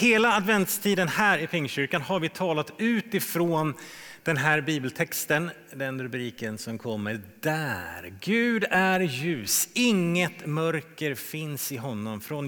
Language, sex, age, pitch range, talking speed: Swedish, male, 30-49, 130-185 Hz, 125 wpm